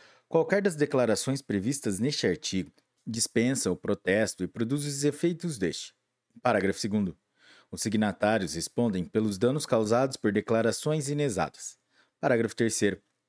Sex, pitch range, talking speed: male, 105-140 Hz, 120 wpm